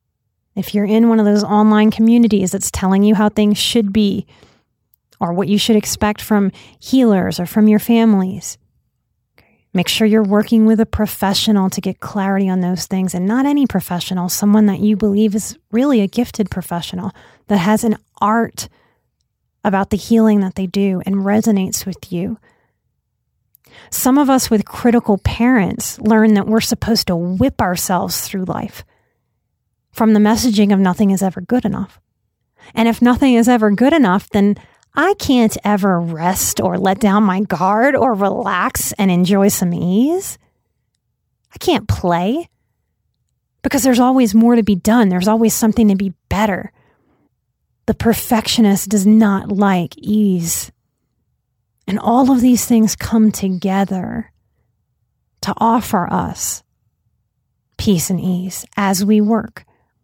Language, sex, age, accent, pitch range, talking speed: English, female, 30-49, American, 190-225 Hz, 150 wpm